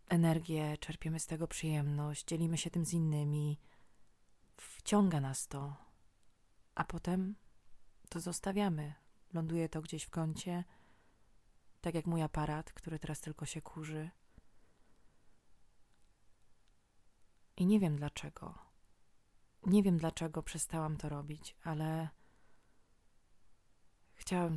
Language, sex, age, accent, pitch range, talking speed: Polish, female, 20-39, native, 115-170 Hz, 105 wpm